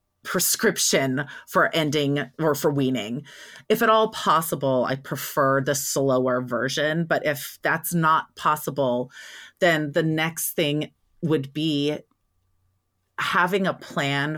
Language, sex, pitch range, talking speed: English, female, 140-170 Hz, 120 wpm